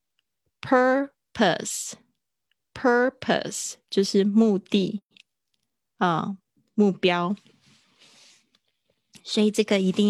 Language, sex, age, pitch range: Chinese, female, 20-39, 170-205 Hz